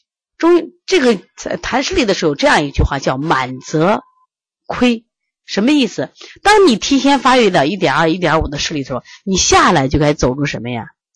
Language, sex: Chinese, female